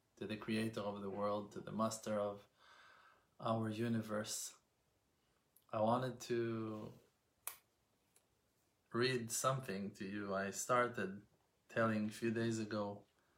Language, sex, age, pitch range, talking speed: English, male, 20-39, 105-120 Hz, 115 wpm